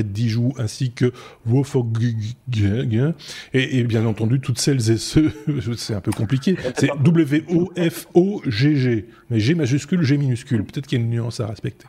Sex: male